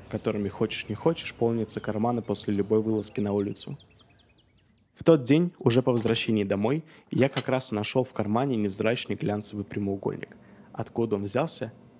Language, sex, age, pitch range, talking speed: Russian, male, 20-39, 110-130 Hz, 150 wpm